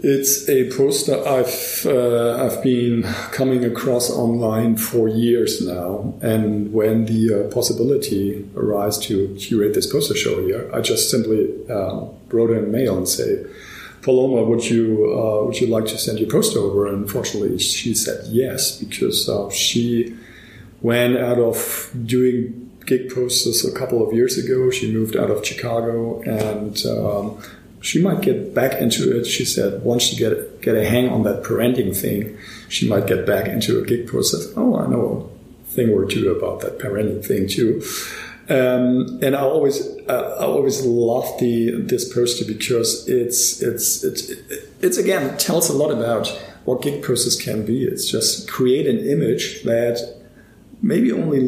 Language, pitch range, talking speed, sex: English, 110-130 Hz, 170 wpm, male